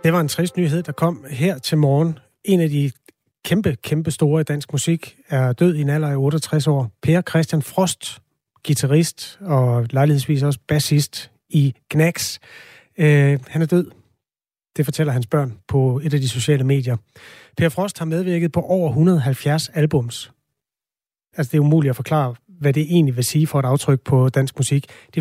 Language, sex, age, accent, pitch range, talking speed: Danish, male, 30-49, native, 135-160 Hz, 180 wpm